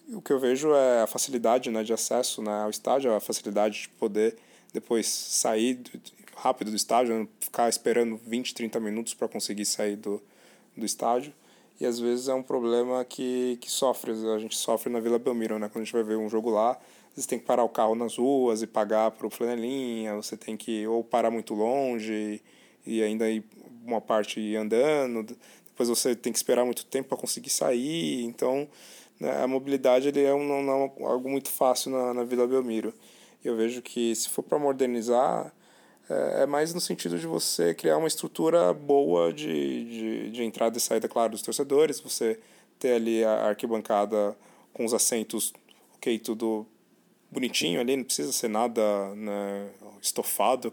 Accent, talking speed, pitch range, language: Brazilian, 180 wpm, 110-125 Hz, Portuguese